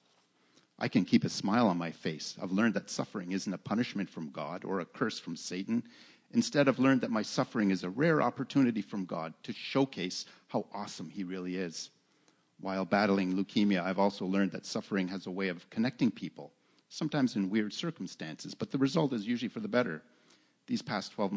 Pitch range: 95-135 Hz